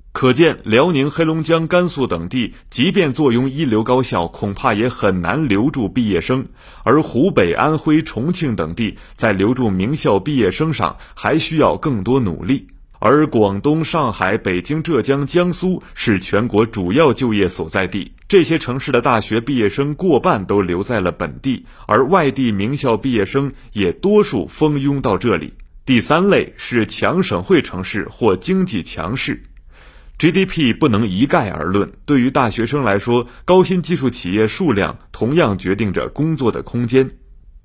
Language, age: Chinese, 30-49